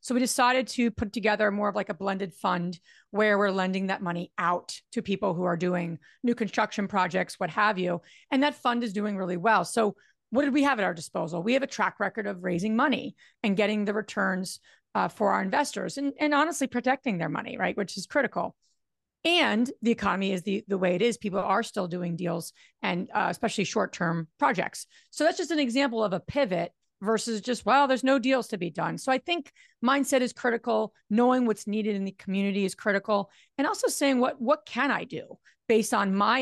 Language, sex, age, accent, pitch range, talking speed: English, female, 30-49, American, 195-245 Hz, 215 wpm